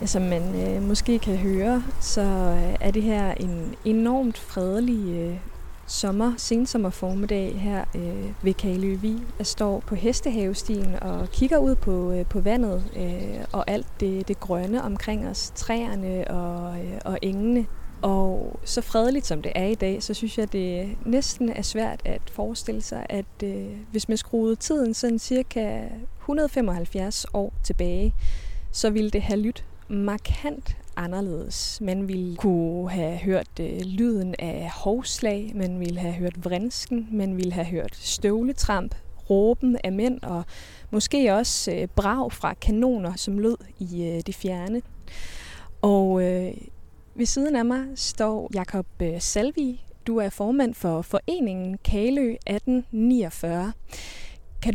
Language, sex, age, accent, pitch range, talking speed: Danish, female, 20-39, native, 185-235 Hz, 145 wpm